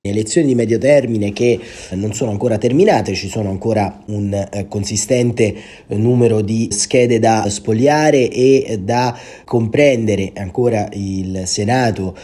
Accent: native